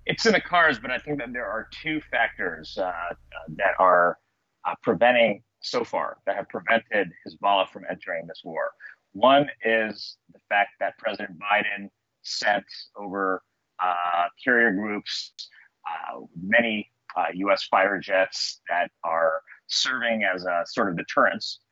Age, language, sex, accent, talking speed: 30-49, English, male, American, 145 wpm